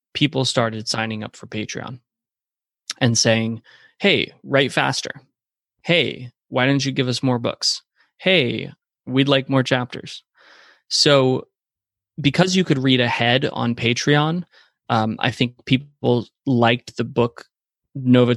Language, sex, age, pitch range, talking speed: English, male, 20-39, 115-140 Hz, 130 wpm